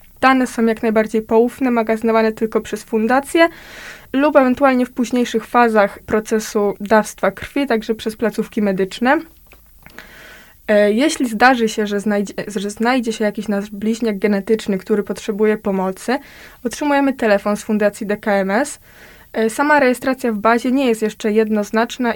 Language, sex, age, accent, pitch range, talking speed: Polish, female, 20-39, native, 215-250 Hz, 130 wpm